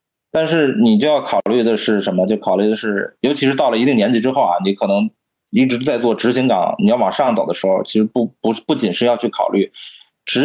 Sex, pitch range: male, 105-150 Hz